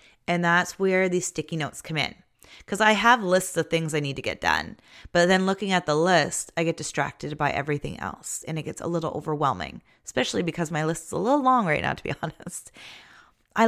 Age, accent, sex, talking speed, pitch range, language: 20-39, American, female, 225 wpm, 145-180 Hz, English